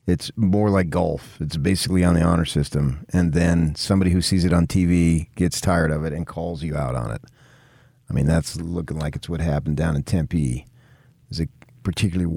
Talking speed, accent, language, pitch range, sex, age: 205 wpm, American, English, 85-125 Hz, male, 40-59